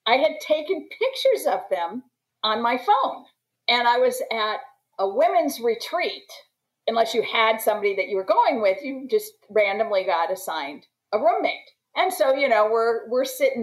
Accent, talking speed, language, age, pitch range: American, 170 wpm, English, 50-69, 210-325 Hz